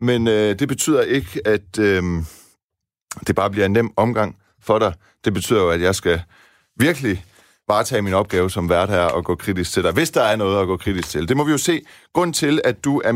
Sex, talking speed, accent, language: male, 235 wpm, native, Danish